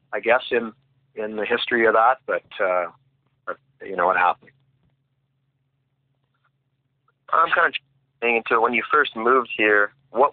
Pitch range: 110-135 Hz